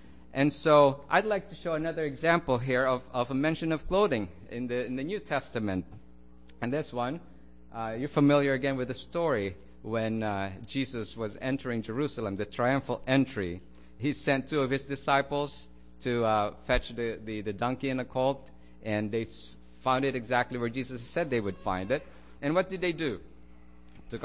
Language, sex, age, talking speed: English, male, 50-69, 185 wpm